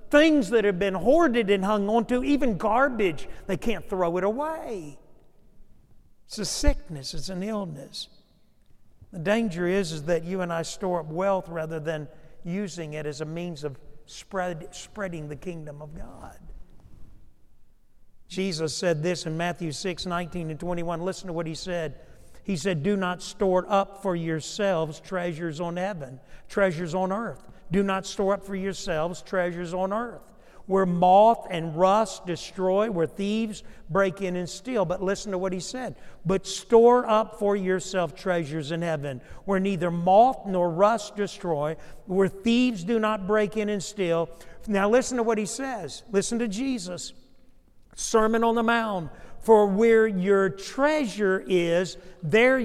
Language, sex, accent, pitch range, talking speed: English, male, American, 170-210 Hz, 160 wpm